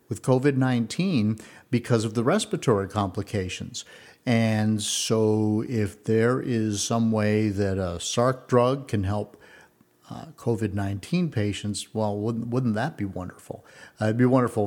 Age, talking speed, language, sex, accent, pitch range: 50-69, 135 wpm, English, male, American, 105-125 Hz